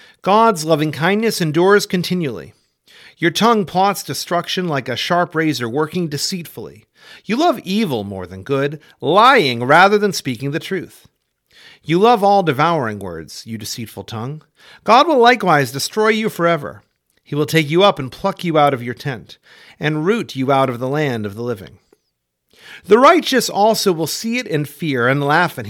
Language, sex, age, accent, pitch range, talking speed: English, male, 40-59, American, 130-195 Hz, 175 wpm